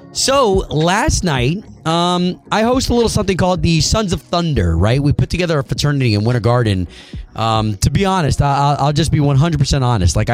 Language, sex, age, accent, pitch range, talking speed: English, male, 30-49, American, 125-195 Hz, 195 wpm